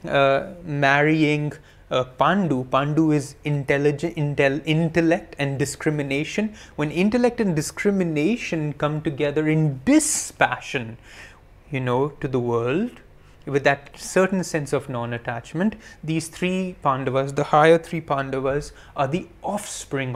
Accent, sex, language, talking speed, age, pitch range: Indian, male, English, 115 wpm, 30-49, 140-180 Hz